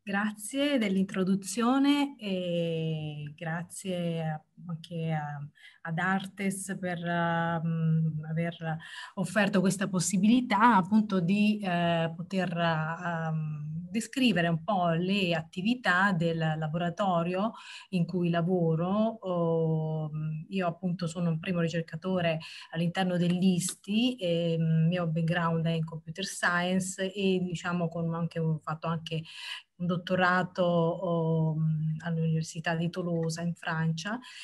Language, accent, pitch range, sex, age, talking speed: Italian, native, 165-190 Hz, female, 30-49, 95 wpm